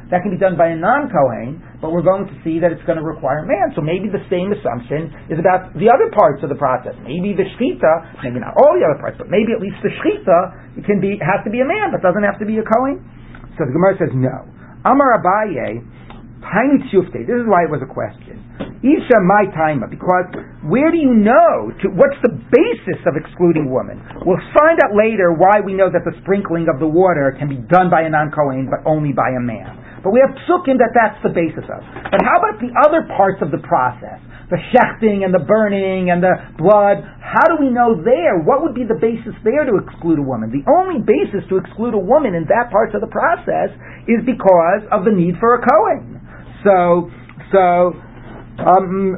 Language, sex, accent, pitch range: English, male, American, 165-225 Hz